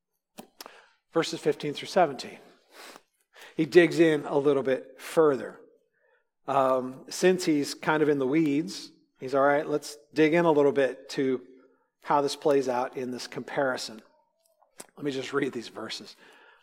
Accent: American